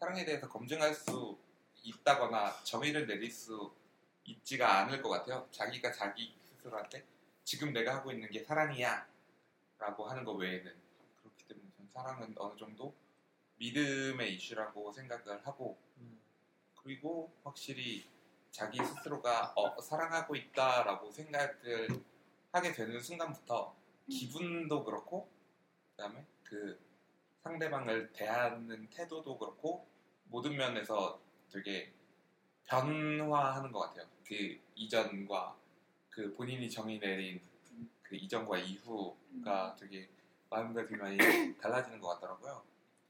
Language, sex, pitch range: Korean, male, 105-145 Hz